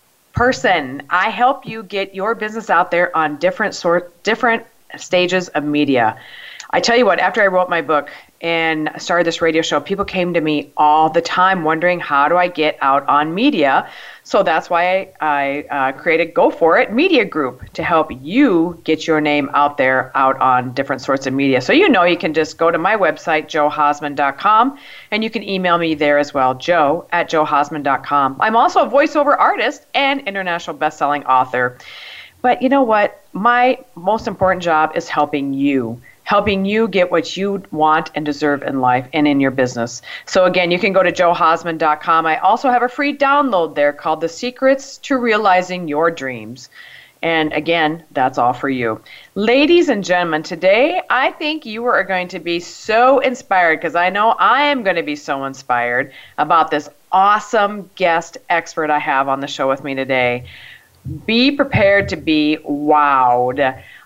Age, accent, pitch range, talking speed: 40-59, American, 145-200 Hz, 185 wpm